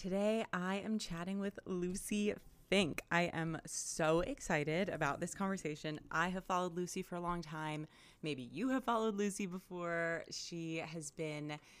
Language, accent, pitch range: English, American, 160-200 Hz